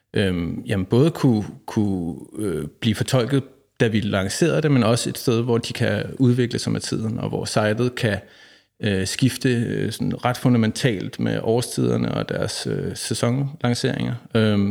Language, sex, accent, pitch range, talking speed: Danish, male, native, 110-125 Hz, 150 wpm